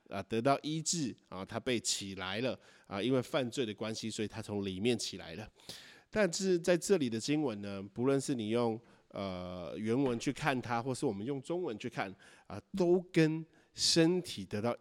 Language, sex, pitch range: Chinese, male, 110-145 Hz